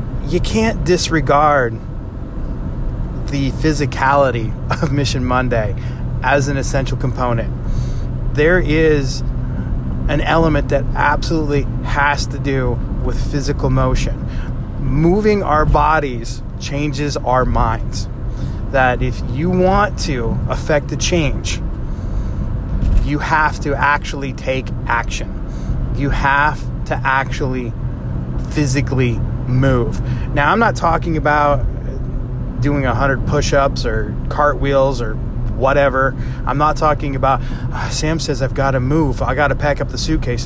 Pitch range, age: 120-145 Hz, 30-49